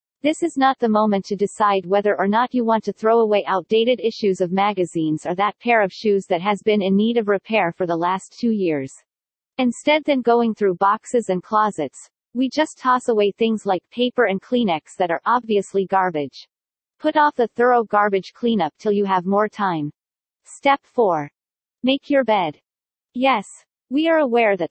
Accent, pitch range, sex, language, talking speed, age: American, 190-245 Hz, female, English, 185 wpm, 40-59